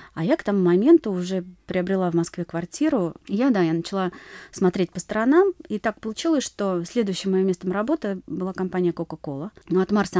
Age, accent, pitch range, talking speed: 30-49, native, 175-215 Hz, 180 wpm